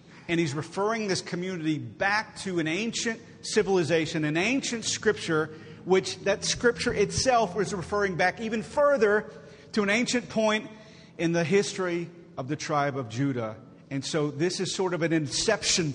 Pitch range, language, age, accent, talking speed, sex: 145-185 Hz, English, 40-59, American, 160 wpm, male